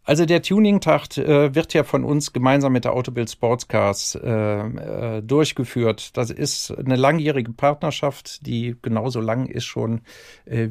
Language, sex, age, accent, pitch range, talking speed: German, male, 50-69, German, 120-145 Hz, 150 wpm